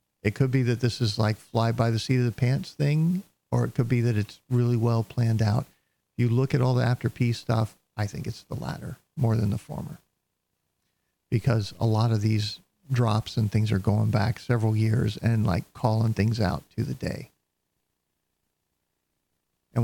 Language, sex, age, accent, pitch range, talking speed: English, male, 50-69, American, 110-125 Hz, 190 wpm